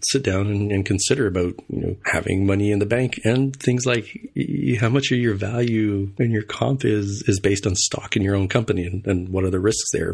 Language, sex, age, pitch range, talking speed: English, male, 30-49, 95-115 Hz, 245 wpm